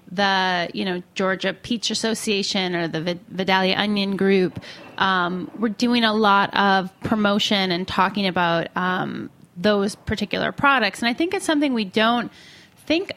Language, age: English, 20-39